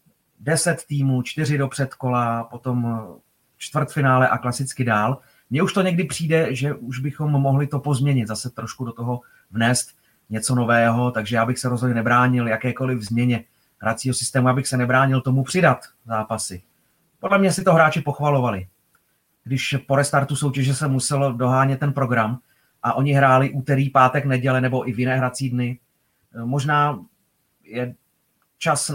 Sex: male